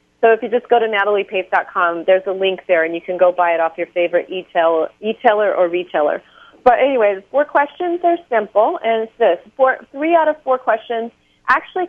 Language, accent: English, American